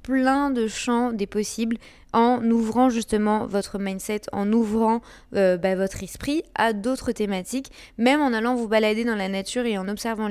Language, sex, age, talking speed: French, female, 20-39, 175 wpm